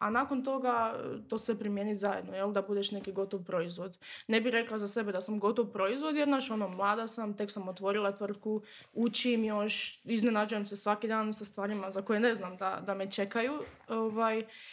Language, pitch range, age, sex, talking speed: Croatian, 210-265 Hz, 20-39, female, 195 wpm